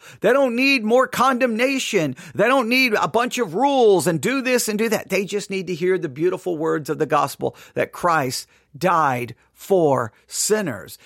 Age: 50-69